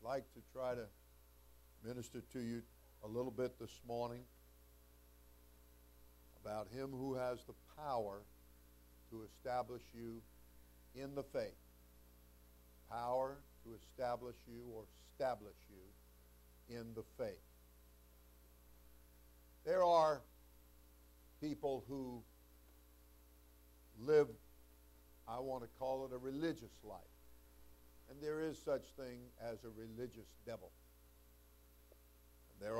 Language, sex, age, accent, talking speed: English, male, 60-79, American, 105 wpm